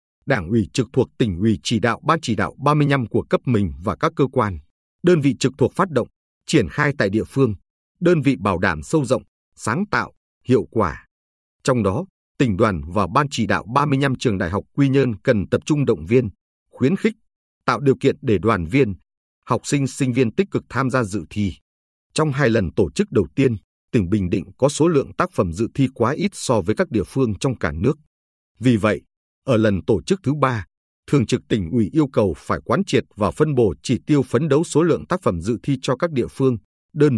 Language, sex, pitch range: Vietnamese, male, 100-140 Hz